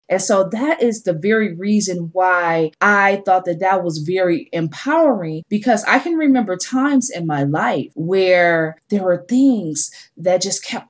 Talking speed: 165 wpm